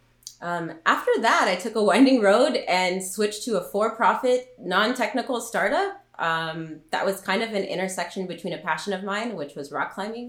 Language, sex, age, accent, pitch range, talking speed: English, female, 20-39, American, 155-210 Hz, 180 wpm